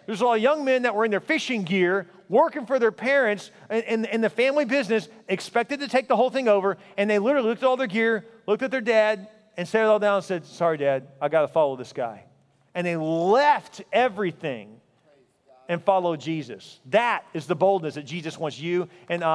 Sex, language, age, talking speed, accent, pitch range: male, English, 40-59, 210 wpm, American, 160-220 Hz